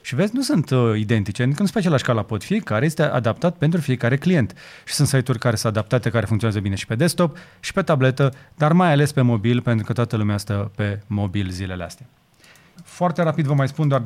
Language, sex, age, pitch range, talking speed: Romanian, male, 30-49, 120-155 Hz, 215 wpm